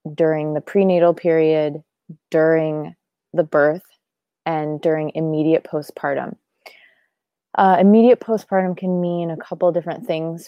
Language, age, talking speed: English, 20-39, 115 wpm